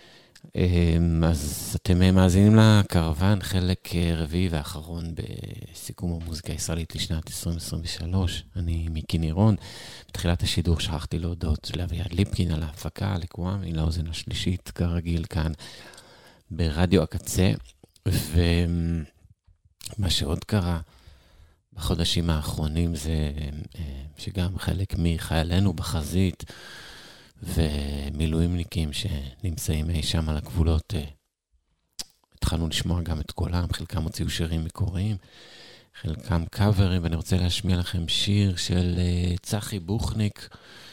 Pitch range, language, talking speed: 80-95 Hz, Hebrew, 95 wpm